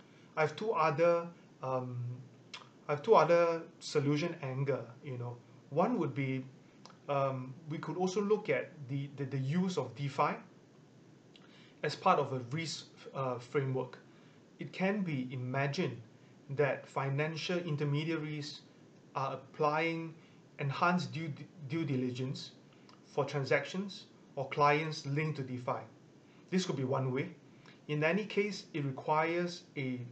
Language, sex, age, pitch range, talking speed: English, male, 30-49, 135-165 Hz, 130 wpm